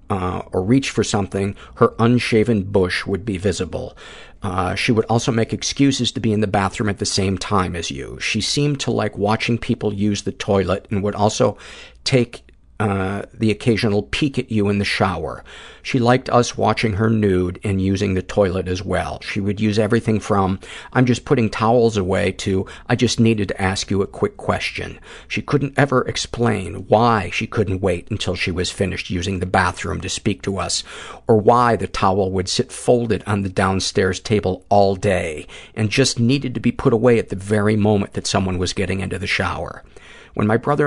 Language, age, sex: English, 50-69, male